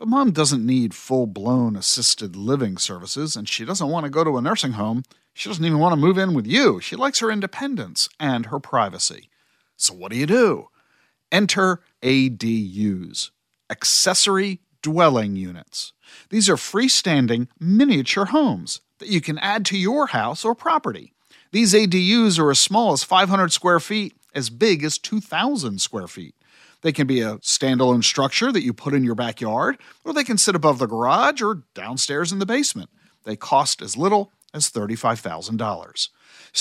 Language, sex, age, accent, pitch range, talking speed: English, male, 50-69, American, 125-200 Hz, 170 wpm